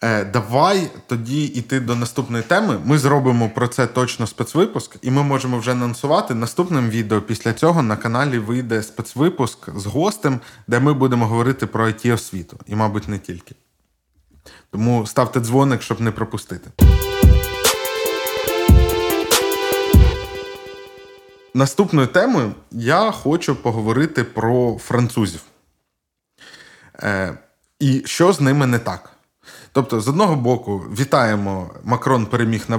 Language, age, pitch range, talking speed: Ukrainian, 20-39, 110-135 Hz, 115 wpm